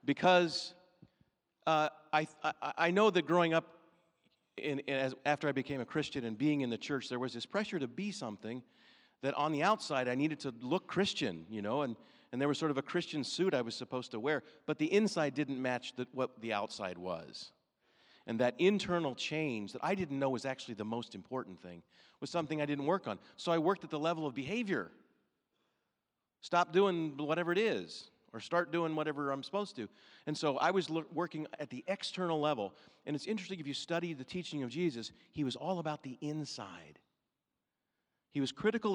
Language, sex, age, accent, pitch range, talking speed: English, male, 40-59, American, 125-175 Hz, 205 wpm